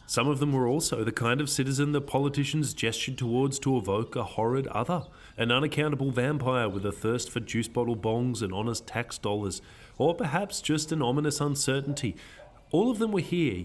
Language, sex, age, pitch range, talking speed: English, male, 30-49, 105-135 Hz, 190 wpm